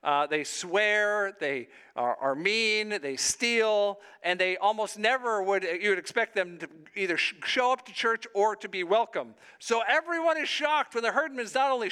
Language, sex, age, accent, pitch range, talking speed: English, male, 50-69, American, 185-255 Hz, 185 wpm